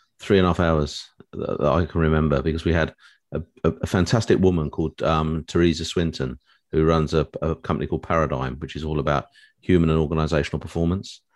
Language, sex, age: English, male, 40-59